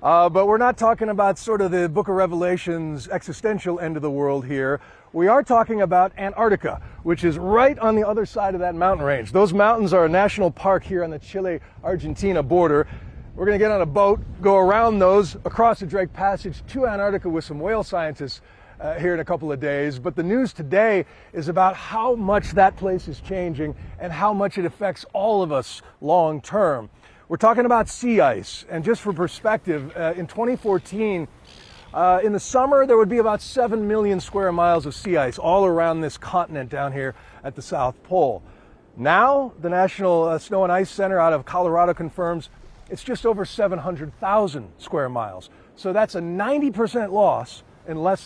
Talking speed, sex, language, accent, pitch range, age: 195 wpm, male, English, American, 160-205 Hz, 40-59